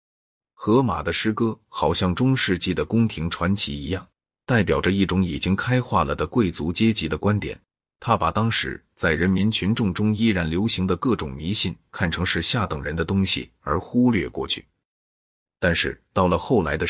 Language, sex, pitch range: Chinese, male, 85-110 Hz